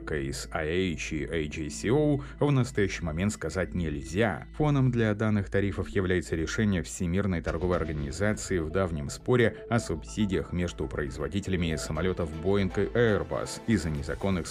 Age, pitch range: 30-49, 85-110 Hz